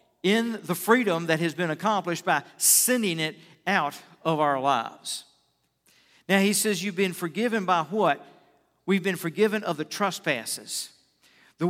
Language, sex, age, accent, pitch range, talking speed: English, male, 50-69, American, 155-195 Hz, 150 wpm